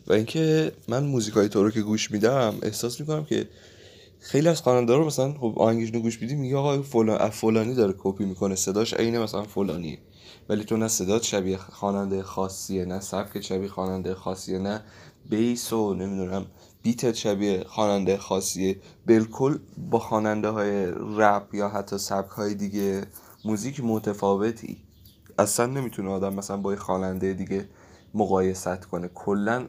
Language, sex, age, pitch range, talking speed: Persian, male, 20-39, 95-115 Hz, 145 wpm